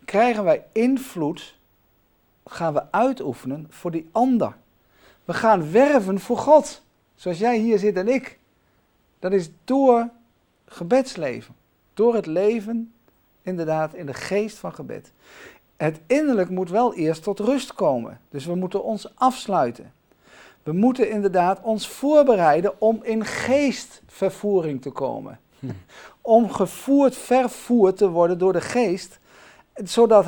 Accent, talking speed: Dutch, 130 wpm